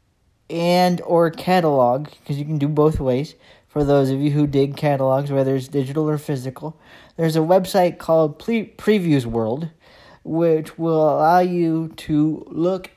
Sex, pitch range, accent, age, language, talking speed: male, 150-175 Hz, American, 40-59, English, 155 wpm